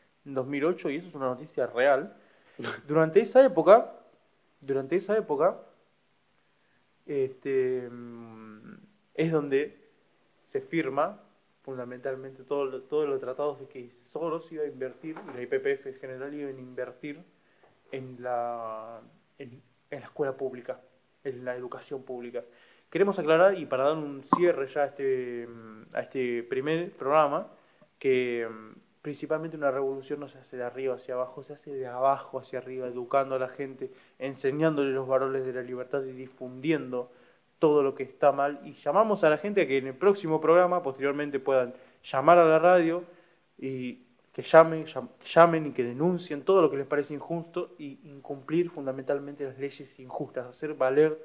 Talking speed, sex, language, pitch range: 160 wpm, male, Spanish, 130-160 Hz